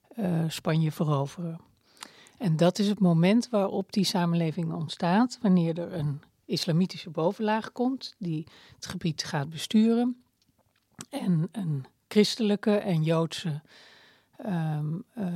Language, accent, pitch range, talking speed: Dutch, Dutch, 165-210 Hz, 115 wpm